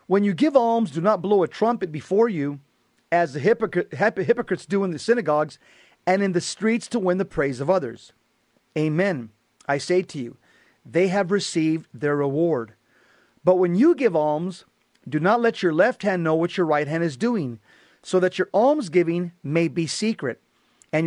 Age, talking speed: 40-59, 180 wpm